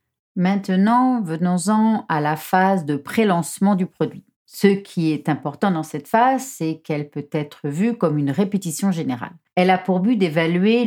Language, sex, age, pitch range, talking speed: French, female, 40-59, 145-190 Hz, 165 wpm